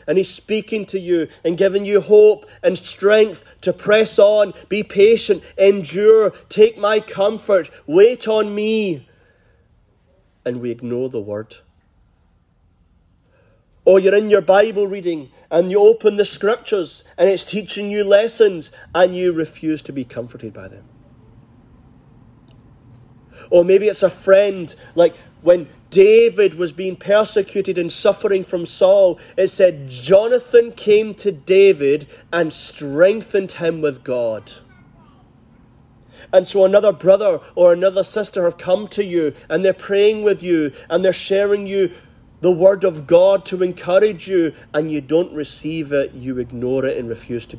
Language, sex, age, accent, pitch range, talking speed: English, male, 30-49, British, 130-205 Hz, 145 wpm